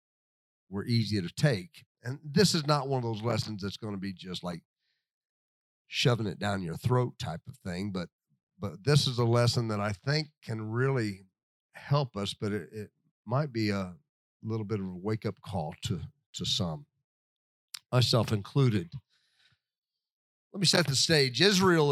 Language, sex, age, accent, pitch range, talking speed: English, male, 50-69, American, 105-135 Hz, 170 wpm